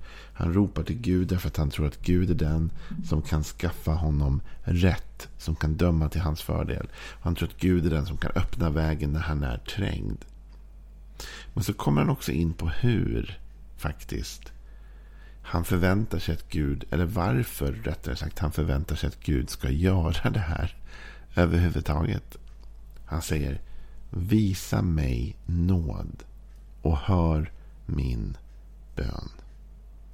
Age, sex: 50-69, male